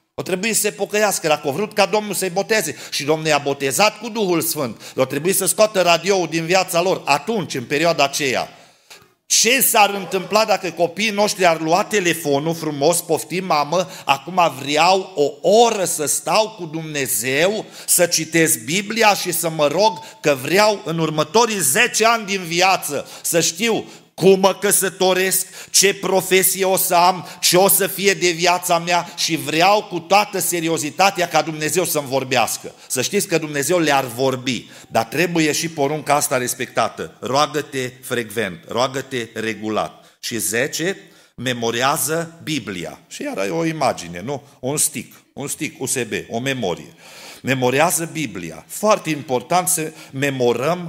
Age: 50-69